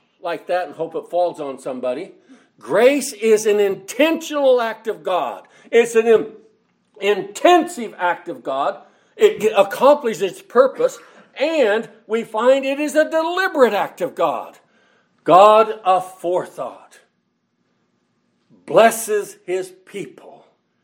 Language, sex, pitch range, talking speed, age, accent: English, male, 195-270 Hz, 120 wpm, 60-79, American